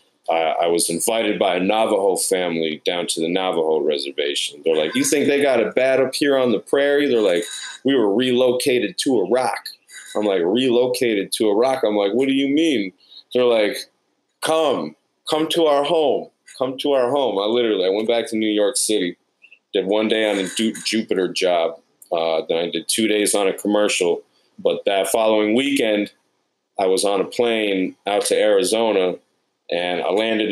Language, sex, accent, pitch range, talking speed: English, male, American, 100-130 Hz, 185 wpm